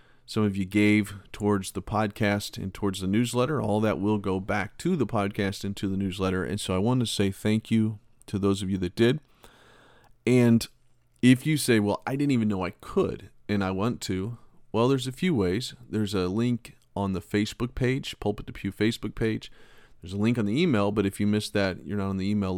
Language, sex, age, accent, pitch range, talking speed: English, male, 40-59, American, 95-120 Hz, 225 wpm